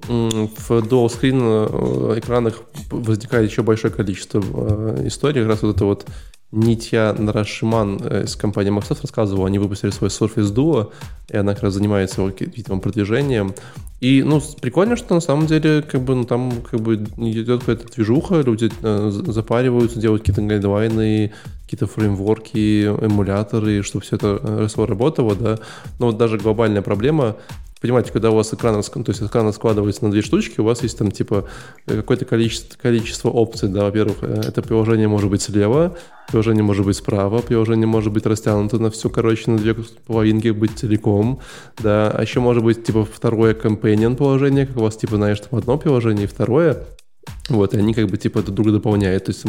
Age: 20-39